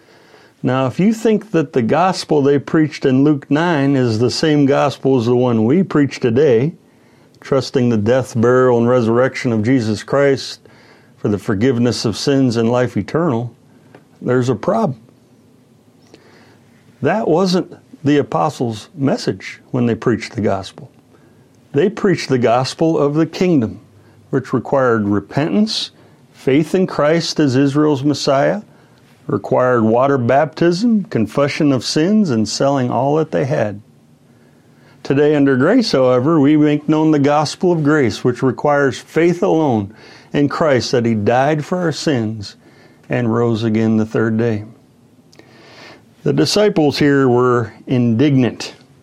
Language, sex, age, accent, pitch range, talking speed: English, male, 60-79, American, 120-150 Hz, 140 wpm